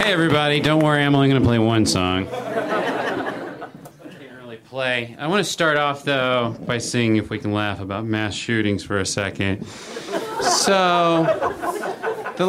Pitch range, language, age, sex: 120-170 Hz, English, 30-49, male